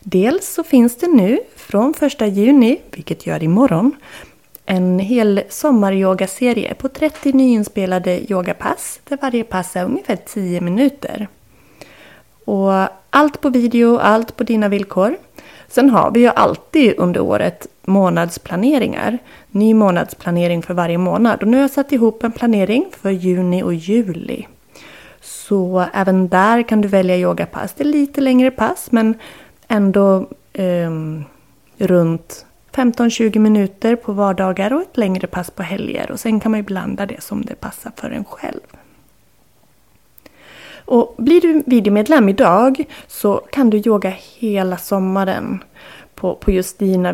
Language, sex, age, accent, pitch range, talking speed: Swedish, female, 30-49, native, 185-245 Hz, 145 wpm